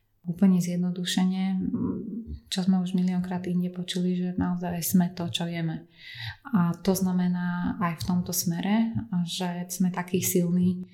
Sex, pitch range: female, 175-190 Hz